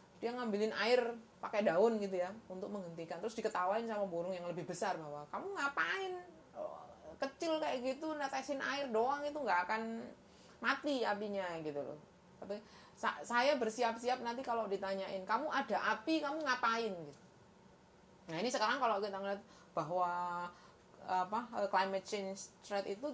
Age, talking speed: 20-39, 150 wpm